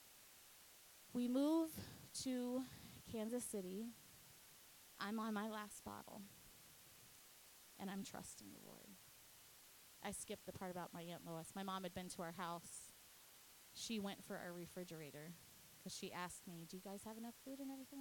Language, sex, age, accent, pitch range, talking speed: English, female, 20-39, American, 185-240 Hz, 155 wpm